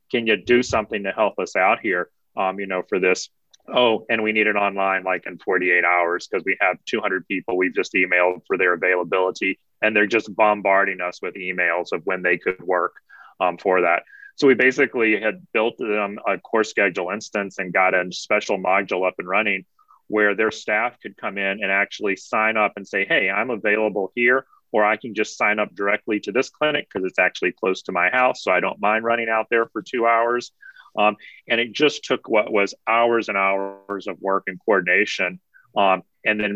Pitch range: 95-115 Hz